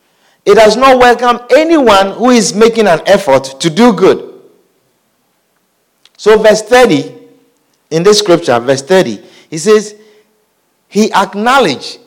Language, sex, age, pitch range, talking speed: English, male, 50-69, 180-270 Hz, 125 wpm